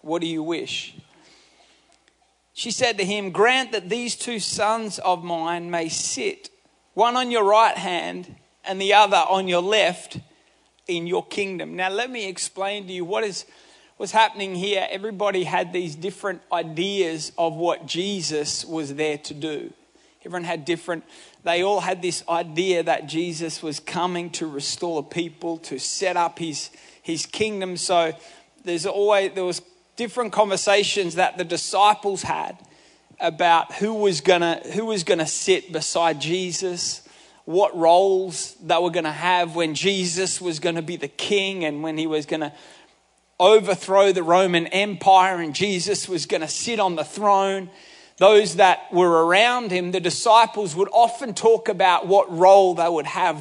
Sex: male